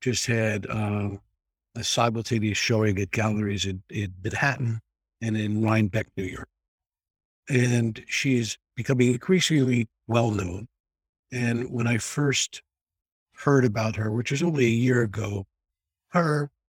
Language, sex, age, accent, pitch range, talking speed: English, male, 60-79, American, 110-140 Hz, 130 wpm